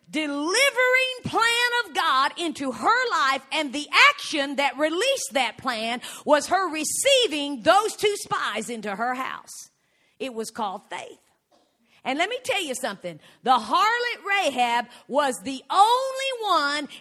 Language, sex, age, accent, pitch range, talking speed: English, female, 50-69, American, 270-420 Hz, 140 wpm